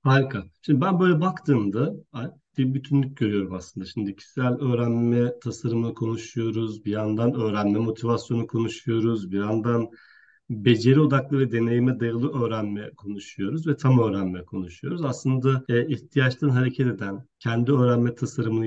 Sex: male